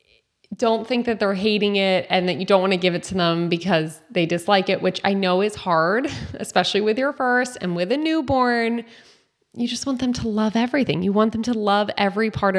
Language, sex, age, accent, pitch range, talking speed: English, female, 20-39, American, 175-230 Hz, 225 wpm